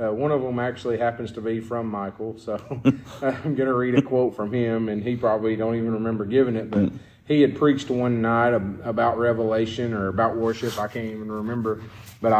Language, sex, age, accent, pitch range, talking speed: English, male, 30-49, American, 110-130 Hz, 210 wpm